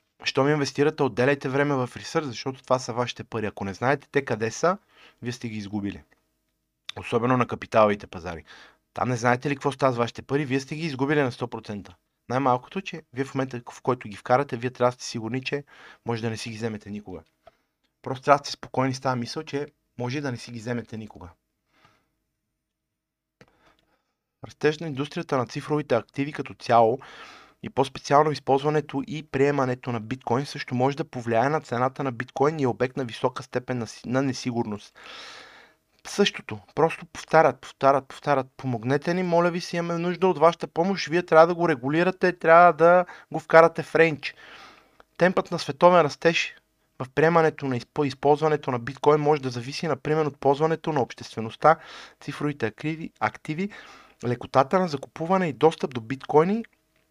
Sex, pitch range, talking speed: male, 120-155 Hz, 165 wpm